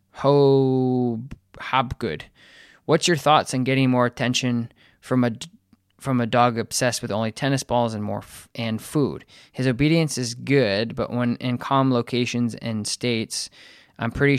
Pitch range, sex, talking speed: 110-135 Hz, male, 155 wpm